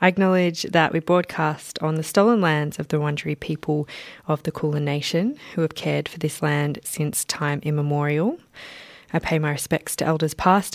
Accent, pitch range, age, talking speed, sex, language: Australian, 155-180 Hz, 20-39, 185 wpm, female, English